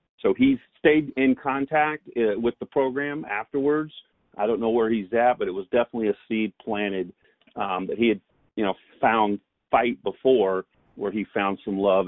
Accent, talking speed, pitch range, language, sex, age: American, 180 wpm, 100-125 Hz, English, male, 40-59